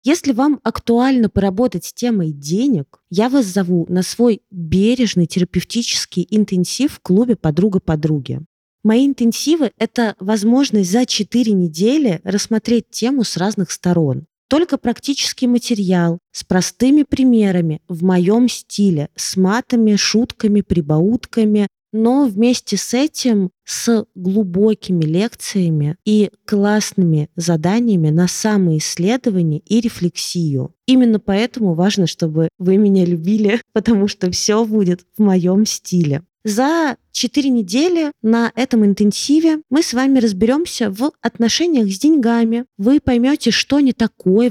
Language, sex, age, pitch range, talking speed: Russian, female, 20-39, 180-240 Hz, 120 wpm